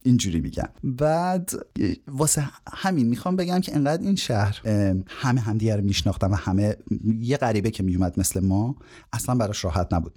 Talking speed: 160 wpm